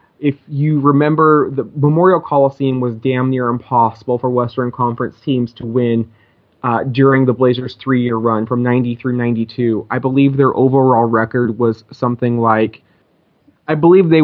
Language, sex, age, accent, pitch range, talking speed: English, male, 20-39, American, 120-140 Hz, 155 wpm